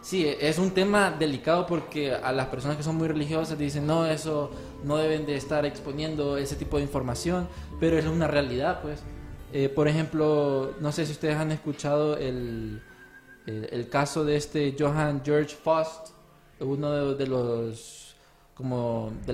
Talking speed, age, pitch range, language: 170 wpm, 20-39, 130-155 Hz, Spanish